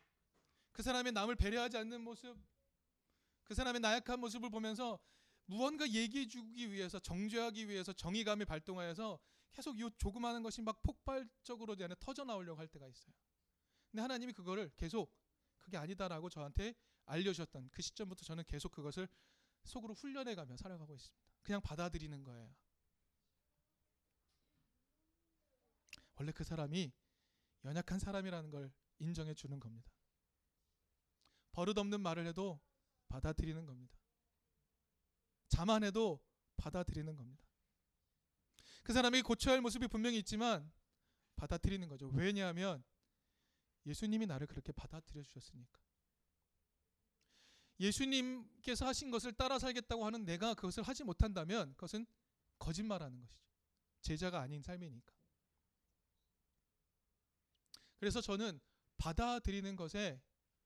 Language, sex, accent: Korean, male, native